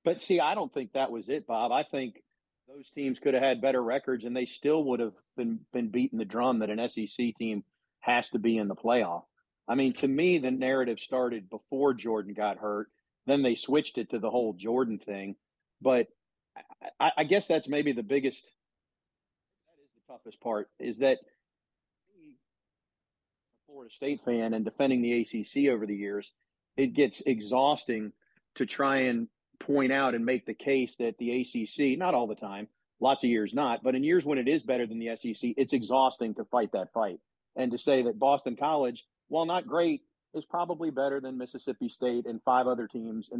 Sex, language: male, English